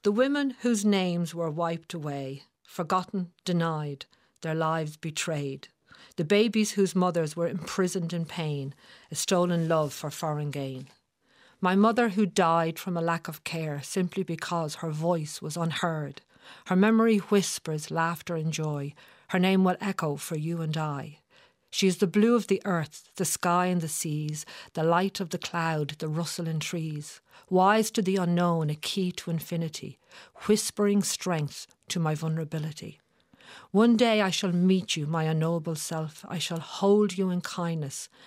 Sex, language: female, English